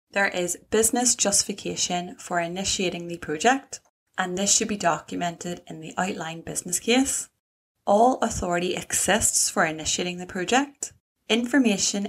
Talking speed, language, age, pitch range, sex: 130 wpm, English, 20-39, 170-220 Hz, female